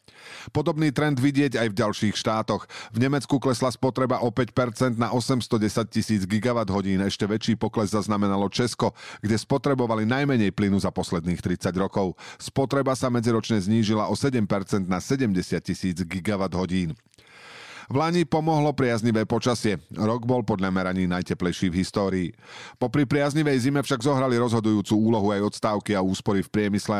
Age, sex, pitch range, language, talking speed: 40-59, male, 95-125 Hz, Slovak, 150 wpm